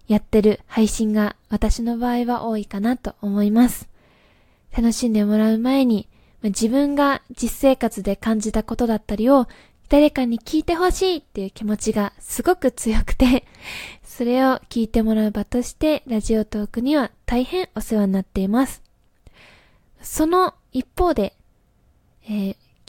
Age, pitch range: 20-39, 205-255 Hz